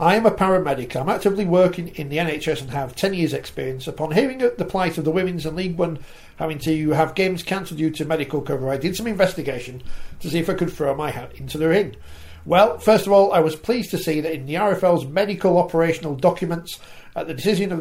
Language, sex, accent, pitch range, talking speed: English, male, British, 145-195 Hz, 235 wpm